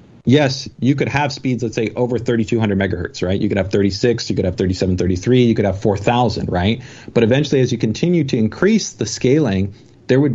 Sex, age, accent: male, 40-59, American